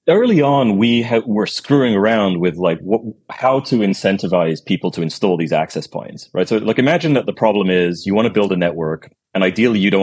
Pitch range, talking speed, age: 85-110 Hz, 220 wpm, 30-49